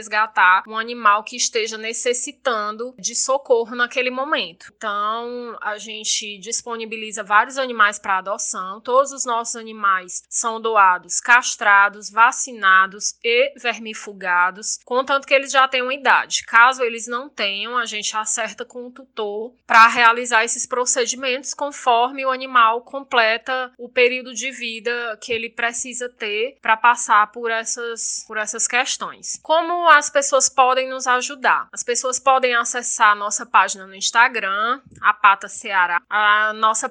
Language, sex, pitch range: Portuguese, female, 210-250 Hz